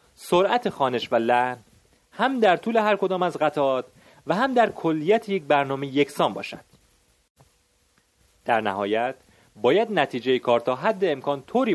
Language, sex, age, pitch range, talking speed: Persian, male, 30-49, 130-195 Hz, 145 wpm